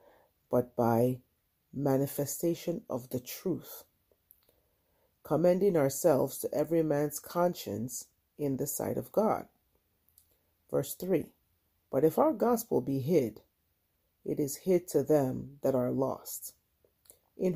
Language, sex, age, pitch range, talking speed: English, female, 40-59, 125-155 Hz, 115 wpm